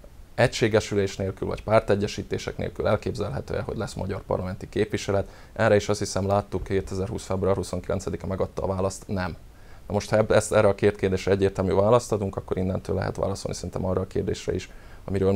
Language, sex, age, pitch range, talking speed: Hungarian, male, 20-39, 95-100 Hz, 170 wpm